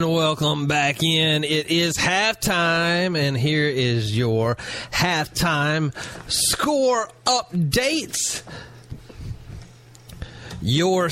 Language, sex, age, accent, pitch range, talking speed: English, male, 30-49, American, 130-170 Hz, 75 wpm